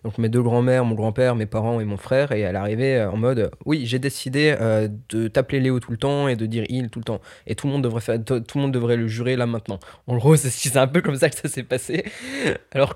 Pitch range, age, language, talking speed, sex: 115-155 Hz, 20-39, French, 280 wpm, male